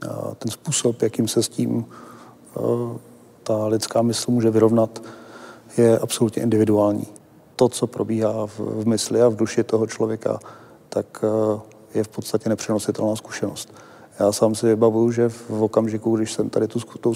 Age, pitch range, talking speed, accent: 40-59, 110-115 Hz, 160 wpm, native